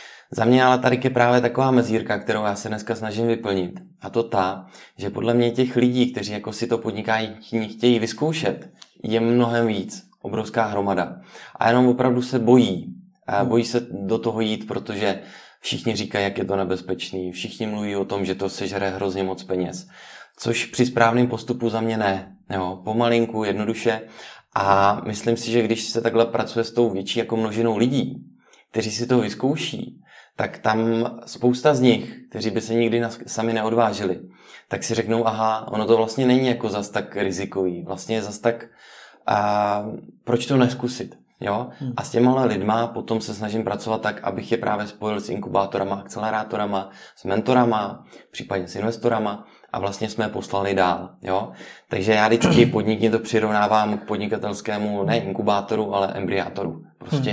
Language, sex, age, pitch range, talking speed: Czech, male, 20-39, 100-120 Hz, 170 wpm